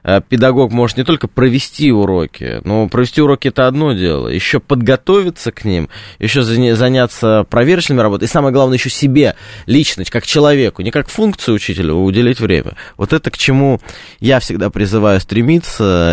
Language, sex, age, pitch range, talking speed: Russian, male, 20-39, 100-145 Hz, 155 wpm